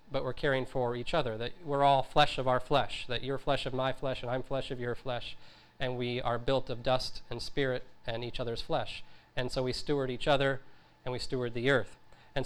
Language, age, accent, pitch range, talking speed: English, 40-59, American, 125-145 Hz, 235 wpm